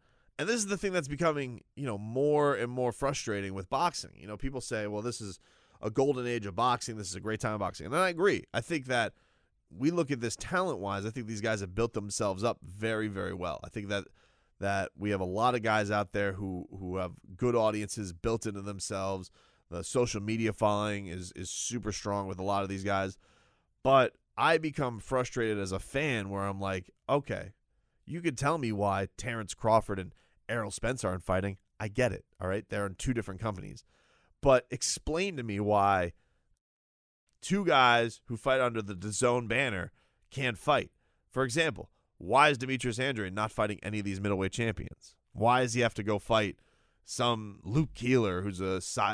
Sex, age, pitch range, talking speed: male, 30-49, 100-125 Hz, 200 wpm